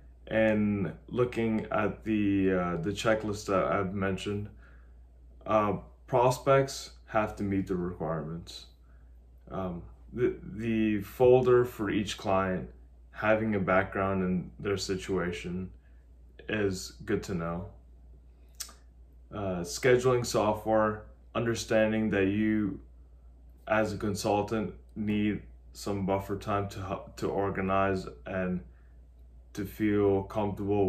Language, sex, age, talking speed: English, male, 20-39, 105 wpm